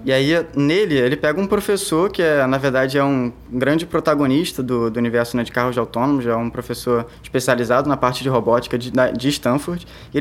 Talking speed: 200 wpm